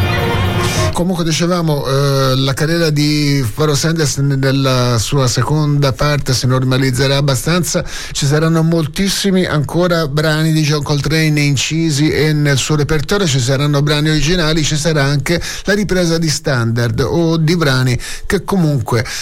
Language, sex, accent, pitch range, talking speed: Italian, male, native, 125-150 Hz, 135 wpm